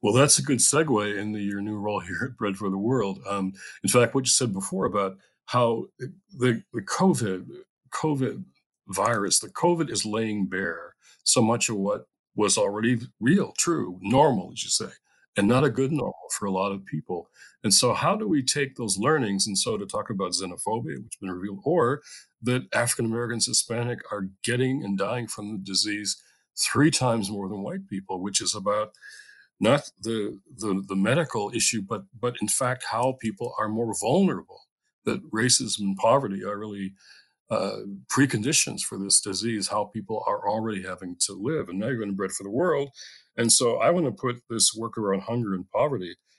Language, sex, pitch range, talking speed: English, male, 100-120 Hz, 195 wpm